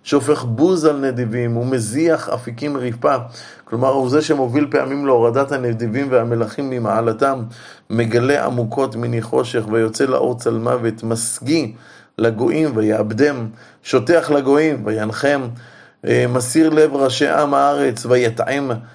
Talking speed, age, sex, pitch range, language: 110 wpm, 30-49, male, 115-135 Hz, Hebrew